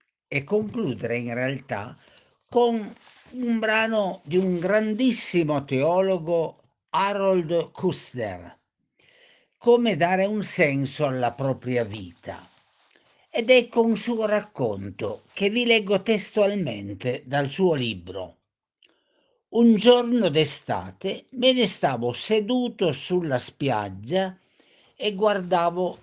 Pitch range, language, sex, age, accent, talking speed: 130-210 Hz, Italian, male, 60-79, native, 100 wpm